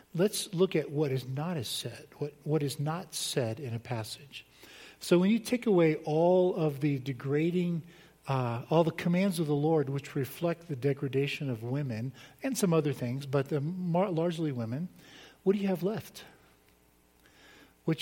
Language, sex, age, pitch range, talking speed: English, male, 50-69, 115-155 Hz, 175 wpm